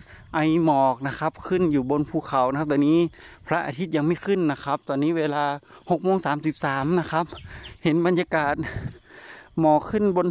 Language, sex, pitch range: Thai, male, 135-175 Hz